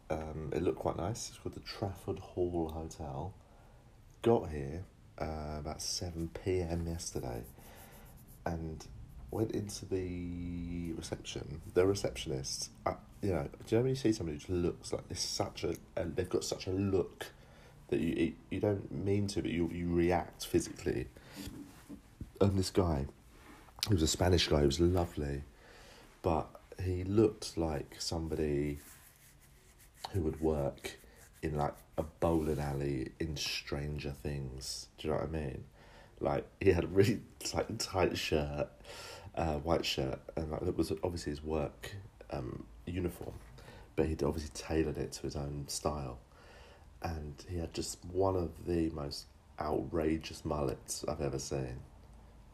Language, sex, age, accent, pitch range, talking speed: English, male, 40-59, British, 75-95 Hz, 155 wpm